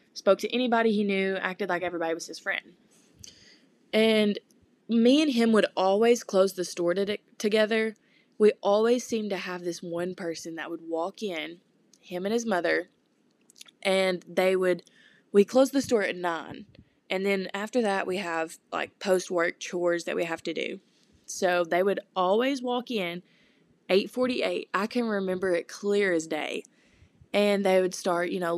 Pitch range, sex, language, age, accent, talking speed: 175-215 Hz, female, English, 20-39, American, 170 wpm